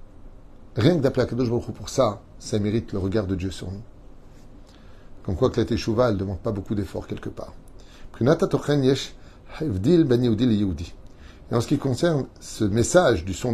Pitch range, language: 100-135 Hz, French